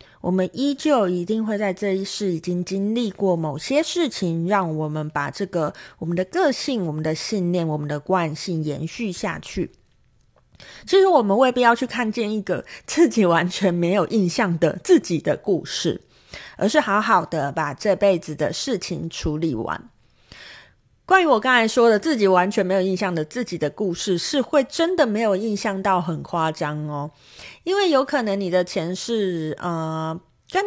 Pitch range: 175-255 Hz